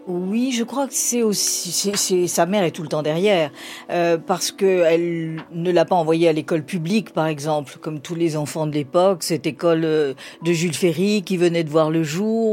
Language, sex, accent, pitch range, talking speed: French, female, French, 155-195 Hz, 215 wpm